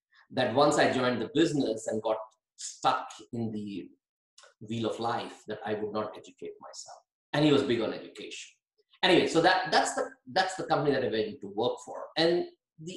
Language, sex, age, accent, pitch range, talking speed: English, male, 50-69, Indian, 115-180 Hz, 195 wpm